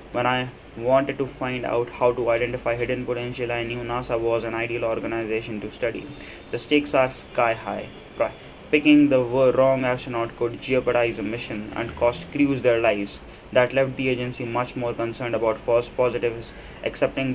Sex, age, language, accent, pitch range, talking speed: male, 20-39, English, Indian, 115-130 Hz, 170 wpm